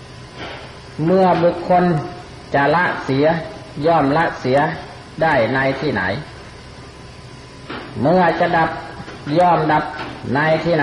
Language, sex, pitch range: Thai, male, 145-175 Hz